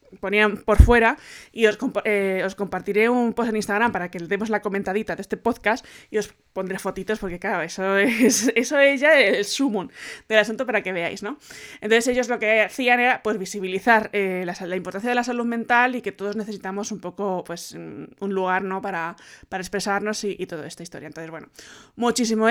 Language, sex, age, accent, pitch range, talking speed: Spanish, female, 20-39, Spanish, 195-245 Hz, 210 wpm